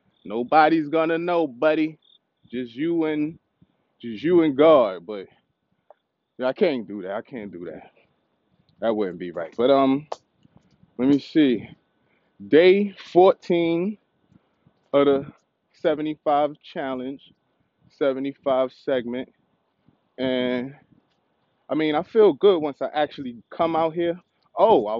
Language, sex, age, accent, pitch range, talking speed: English, male, 20-39, American, 130-170 Hz, 125 wpm